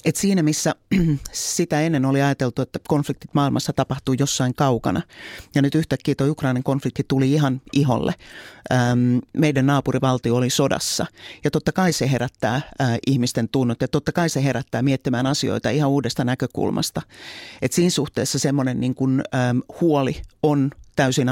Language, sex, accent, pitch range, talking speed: Finnish, male, native, 125-150 Hz, 150 wpm